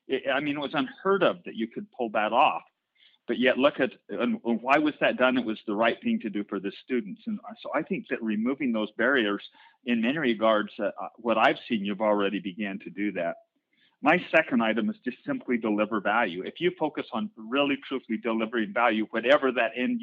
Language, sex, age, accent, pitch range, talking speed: English, male, 40-59, American, 105-135 Hz, 215 wpm